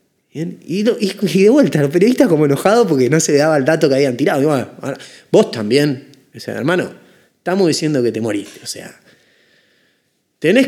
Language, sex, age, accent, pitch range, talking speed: Spanish, male, 20-39, Argentinian, 130-190 Hz, 190 wpm